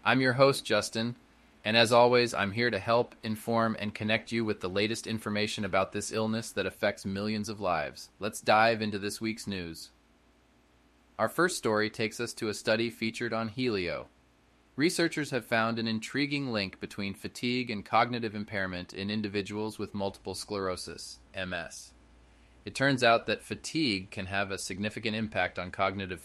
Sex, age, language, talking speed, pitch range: male, 20-39, English, 165 wpm, 100-115 Hz